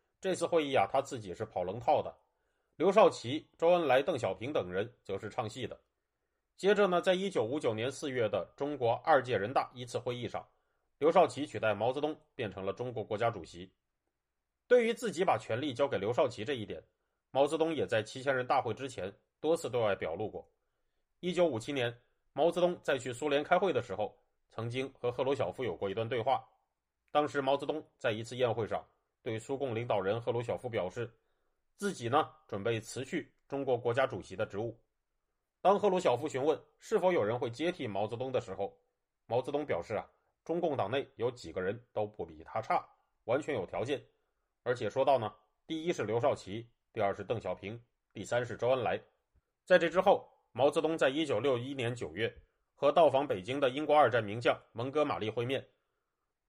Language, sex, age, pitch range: Chinese, male, 30-49, 115-175 Hz